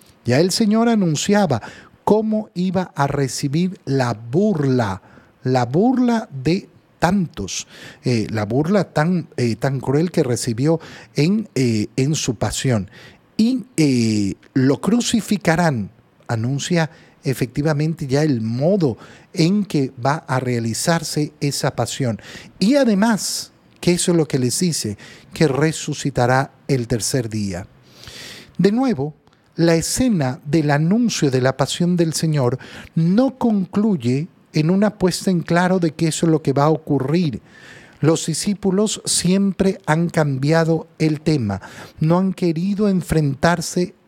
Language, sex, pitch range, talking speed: Spanish, male, 130-185 Hz, 130 wpm